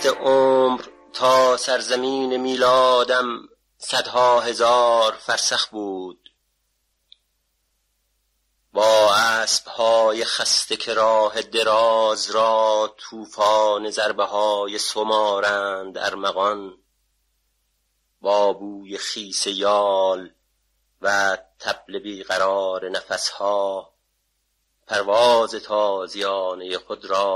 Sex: male